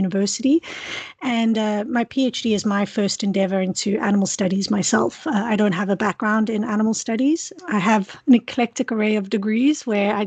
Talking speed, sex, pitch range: 180 wpm, female, 205-235 Hz